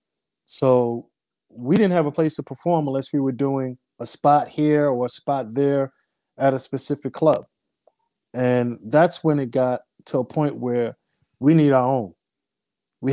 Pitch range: 130-155 Hz